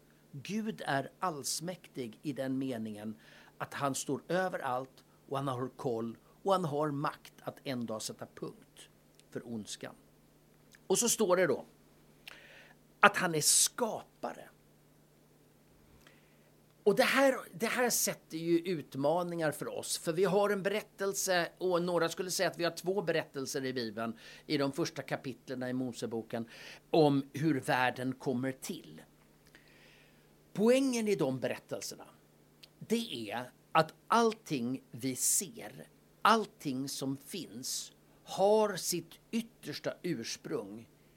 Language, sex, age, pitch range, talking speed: Swedish, male, 50-69, 130-190 Hz, 125 wpm